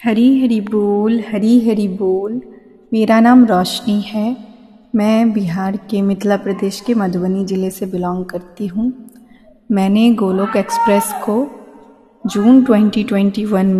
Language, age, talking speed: Hindi, 30-49, 120 wpm